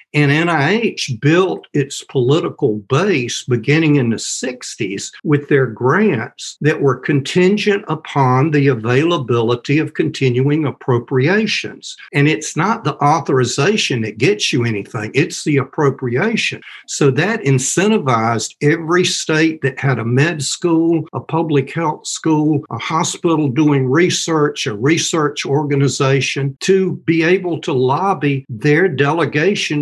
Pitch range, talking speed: 130-165 Hz, 125 wpm